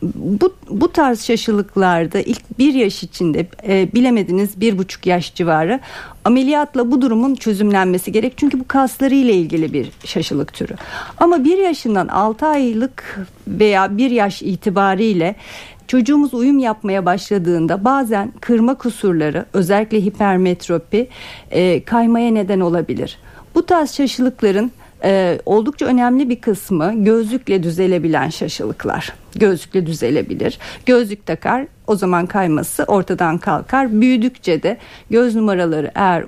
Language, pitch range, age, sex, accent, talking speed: Turkish, 185-250 Hz, 60-79, female, native, 120 wpm